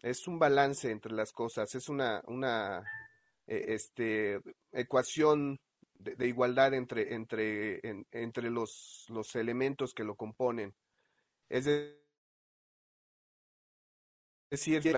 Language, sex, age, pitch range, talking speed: English, male, 30-49, 115-145 Hz, 110 wpm